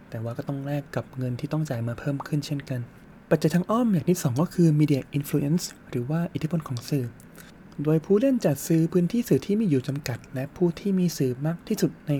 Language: Thai